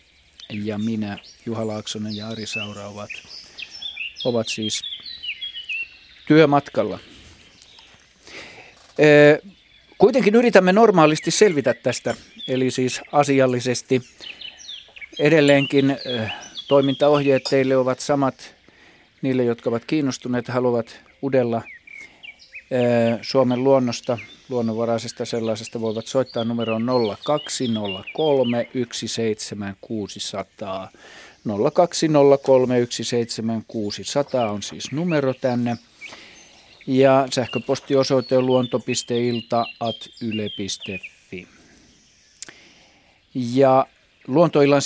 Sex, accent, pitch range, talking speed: male, native, 115-135 Hz, 65 wpm